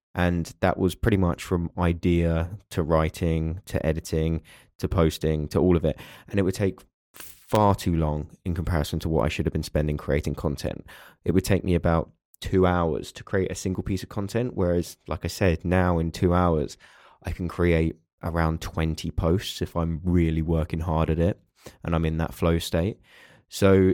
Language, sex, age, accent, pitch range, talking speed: English, male, 20-39, British, 80-95 Hz, 195 wpm